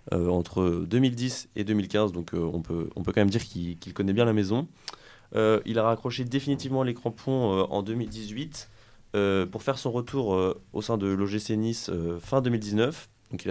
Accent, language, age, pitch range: French, French, 20-39, 90-120 Hz